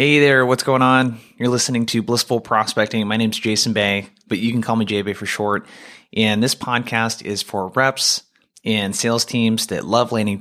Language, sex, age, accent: English, male, 20-39, American